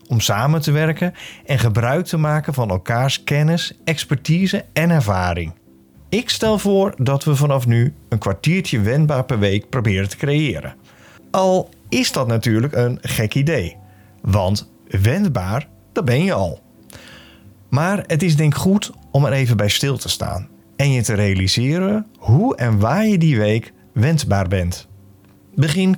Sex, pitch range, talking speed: male, 105-160 Hz, 155 wpm